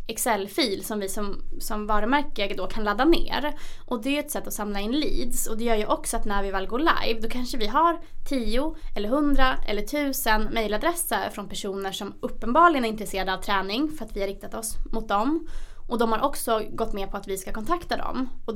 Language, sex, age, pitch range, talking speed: English, female, 20-39, 205-255 Hz, 225 wpm